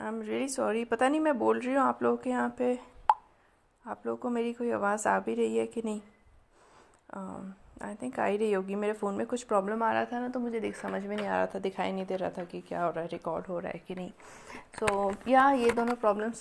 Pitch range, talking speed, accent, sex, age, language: 200-235 Hz, 265 wpm, native, female, 30-49, Hindi